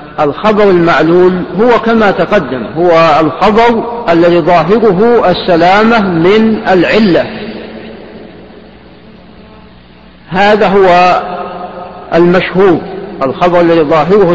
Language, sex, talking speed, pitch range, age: Arabic, male, 75 wpm, 170-210 Hz, 50-69